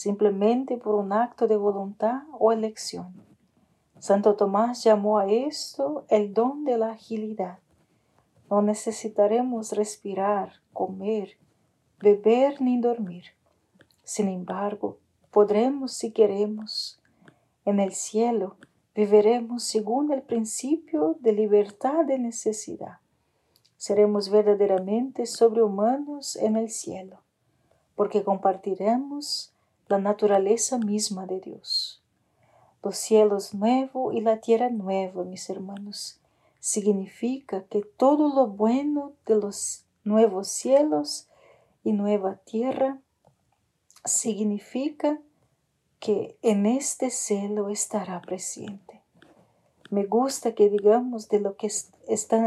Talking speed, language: 105 wpm, Spanish